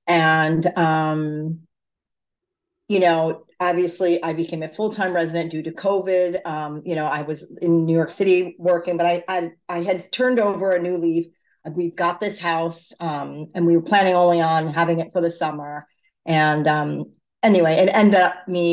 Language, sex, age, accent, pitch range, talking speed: English, female, 40-59, American, 160-185 Hz, 185 wpm